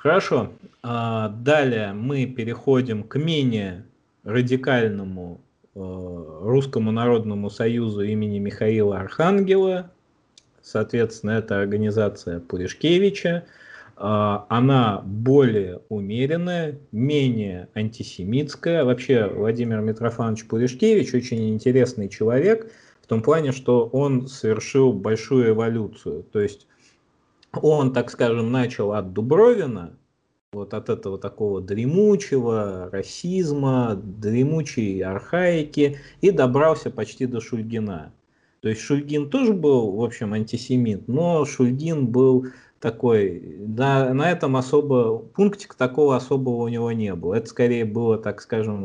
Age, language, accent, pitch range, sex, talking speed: 30-49, Russian, native, 105-135 Hz, male, 105 wpm